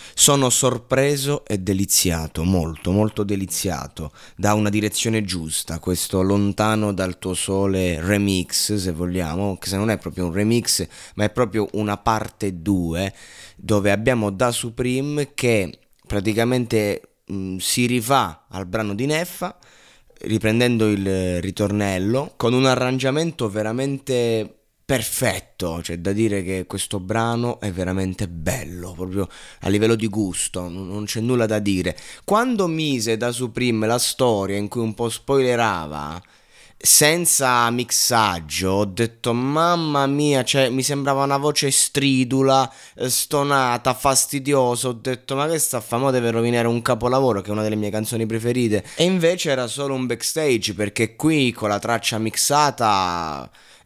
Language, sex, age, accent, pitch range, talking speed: Italian, male, 20-39, native, 100-130 Hz, 140 wpm